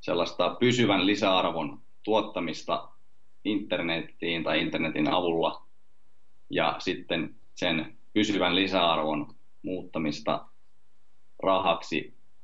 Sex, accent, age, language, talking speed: male, native, 30-49, Finnish, 70 wpm